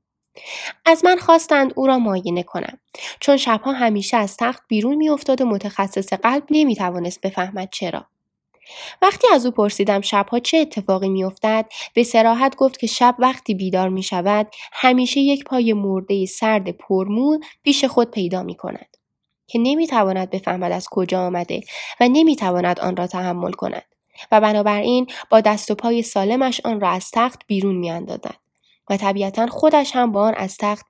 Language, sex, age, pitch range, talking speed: Persian, female, 10-29, 195-250 Hz, 165 wpm